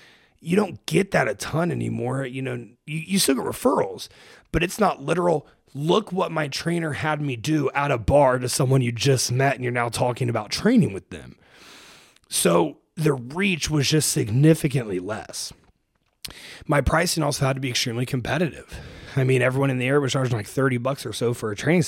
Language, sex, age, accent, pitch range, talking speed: English, male, 30-49, American, 120-155 Hz, 195 wpm